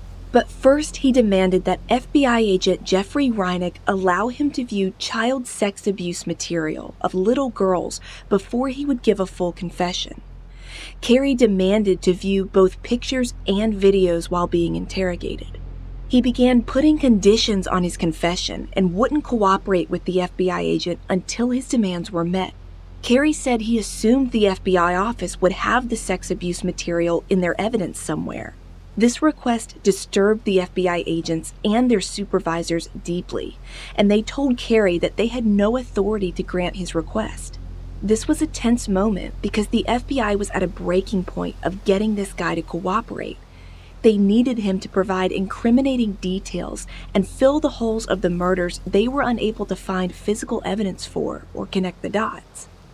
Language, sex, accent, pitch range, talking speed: English, female, American, 180-235 Hz, 160 wpm